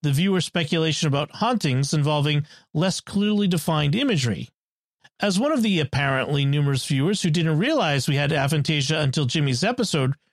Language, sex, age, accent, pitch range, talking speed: English, male, 40-59, American, 150-205 Hz, 150 wpm